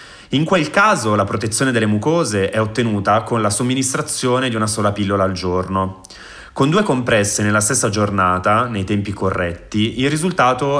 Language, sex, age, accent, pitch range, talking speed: Italian, male, 20-39, native, 95-115 Hz, 160 wpm